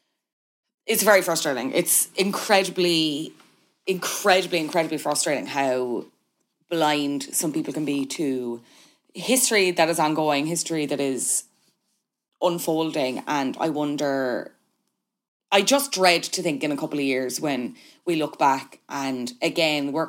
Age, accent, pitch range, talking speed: 20-39, Irish, 145-185 Hz, 130 wpm